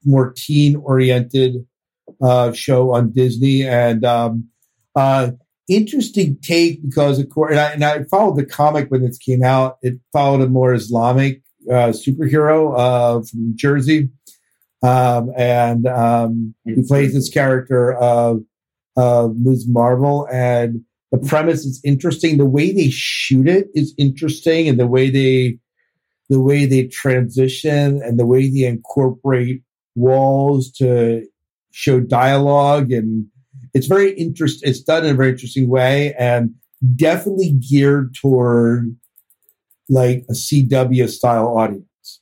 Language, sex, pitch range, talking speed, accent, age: English, male, 120-140 Hz, 140 wpm, American, 50-69